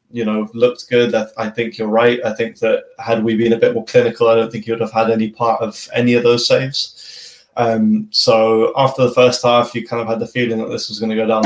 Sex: male